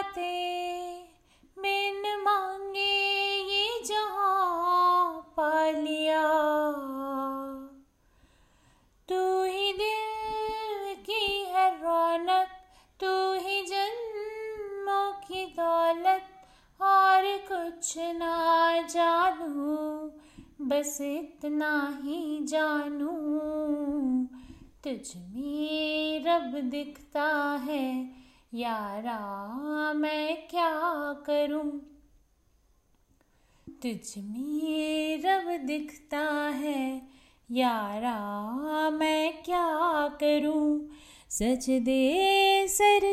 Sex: female